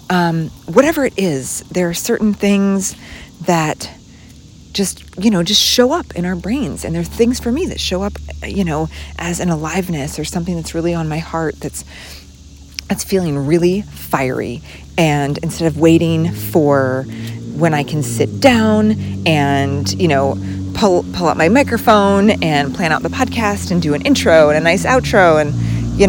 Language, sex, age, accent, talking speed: English, female, 30-49, American, 175 wpm